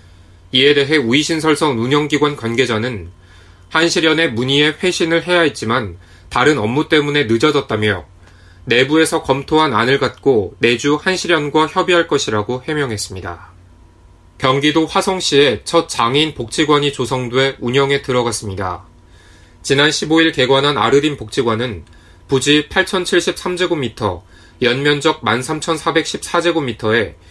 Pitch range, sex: 95-155 Hz, male